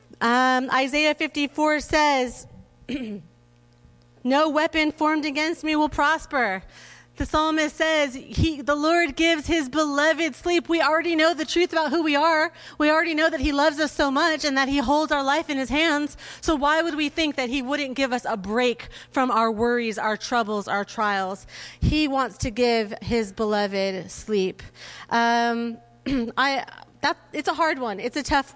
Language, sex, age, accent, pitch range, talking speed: English, female, 30-49, American, 230-300 Hz, 175 wpm